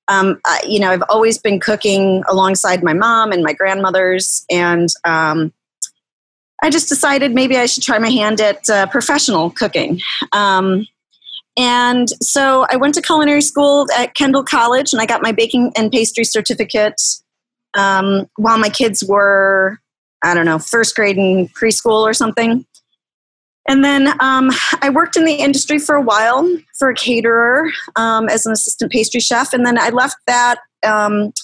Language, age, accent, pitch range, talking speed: English, 30-49, American, 200-260 Hz, 165 wpm